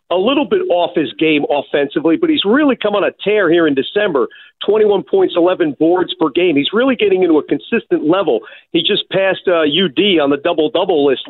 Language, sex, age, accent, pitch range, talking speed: English, male, 50-69, American, 170-285 Hz, 205 wpm